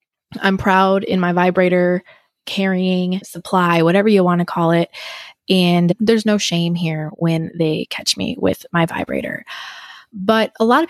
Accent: American